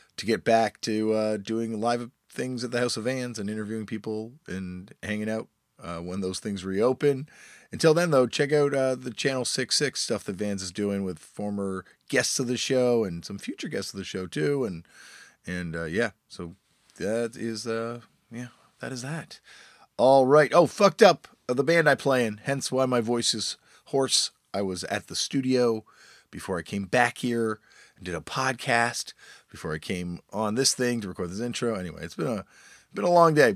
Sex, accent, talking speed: male, American, 200 wpm